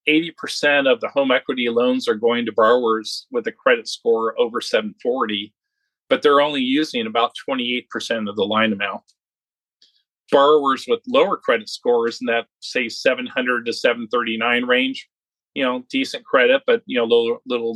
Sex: male